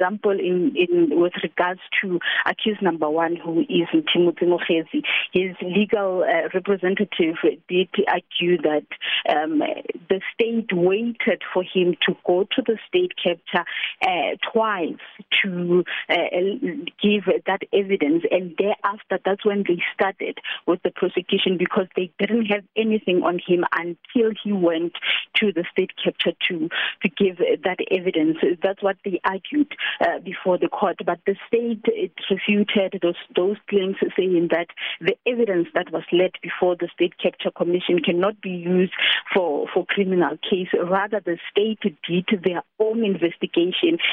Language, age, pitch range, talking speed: English, 30-49, 175-220 Hz, 150 wpm